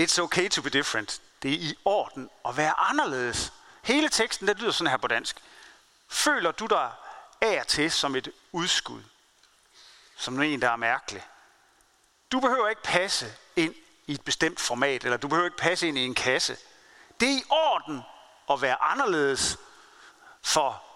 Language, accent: Danish, native